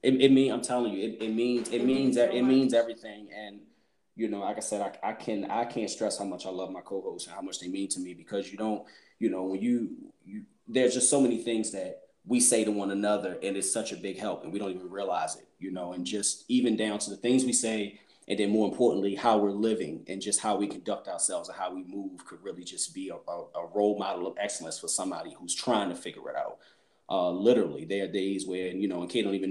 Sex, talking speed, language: male, 260 wpm, English